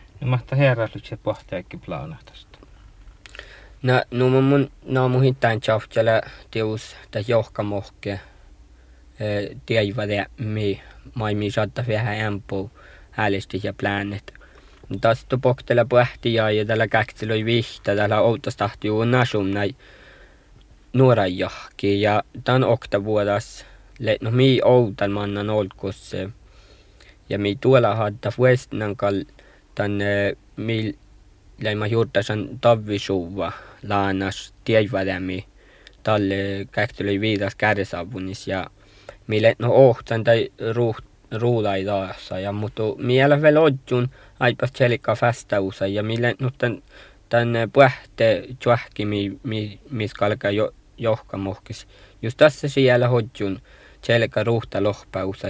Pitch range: 100-120 Hz